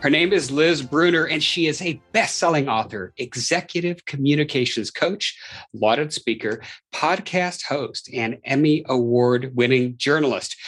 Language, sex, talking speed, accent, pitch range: English, male, 125 wpm, American, 125-170 Hz